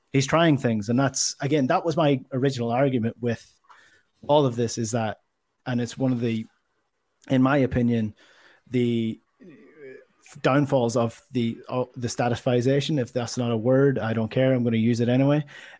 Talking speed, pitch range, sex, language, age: 170 wpm, 115-135 Hz, male, English, 20-39